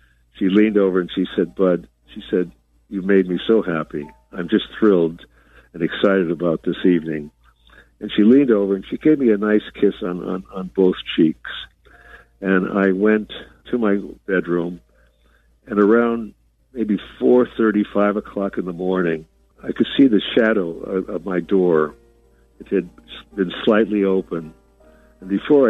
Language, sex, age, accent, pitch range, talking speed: English, male, 60-79, American, 85-100 Hz, 165 wpm